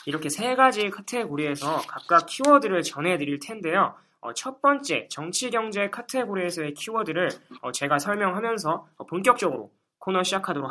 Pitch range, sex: 165-245 Hz, male